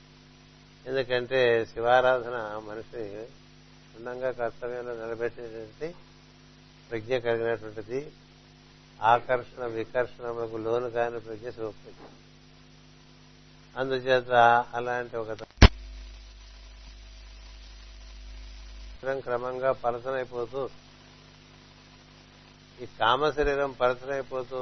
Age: 60-79